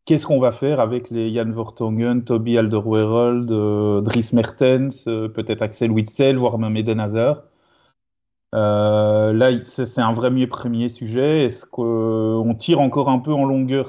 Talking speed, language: 165 wpm, French